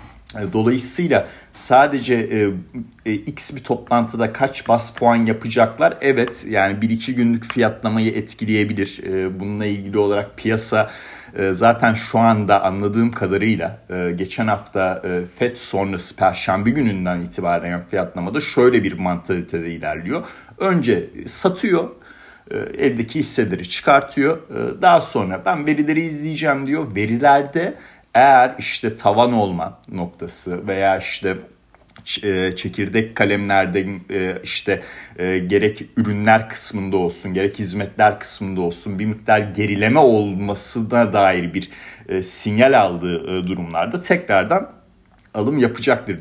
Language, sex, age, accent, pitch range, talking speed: Turkish, male, 40-59, native, 95-115 Hz, 115 wpm